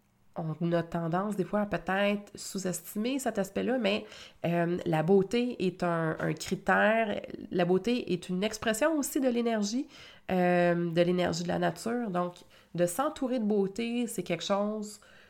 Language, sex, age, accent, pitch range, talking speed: French, female, 30-49, Canadian, 165-205 Hz, 155 wpm